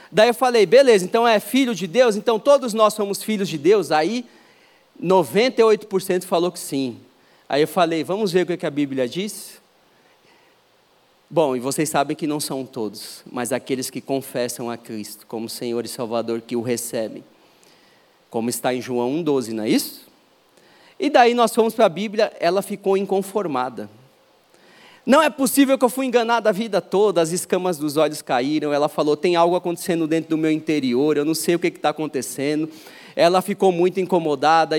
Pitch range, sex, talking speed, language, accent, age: 150-200 Hz, male, 185 wpm, Portuguese, Brazilian, 40-59